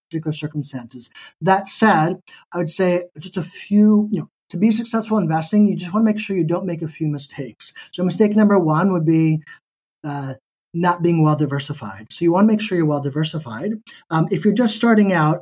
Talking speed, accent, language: 200 wpm, American, English